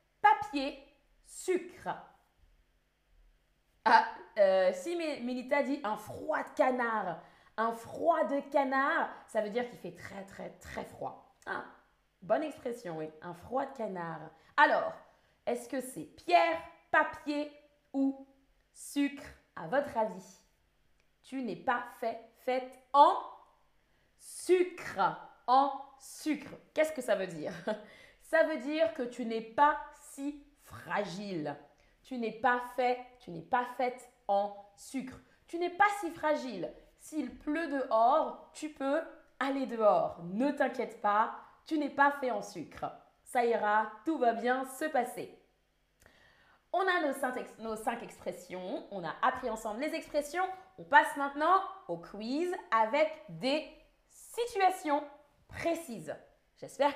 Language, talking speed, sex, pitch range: French, 130 wpm, female, 225-300 Hz